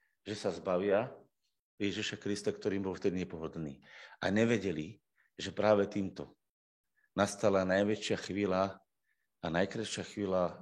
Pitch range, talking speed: 90-120 Hz, 115 wpm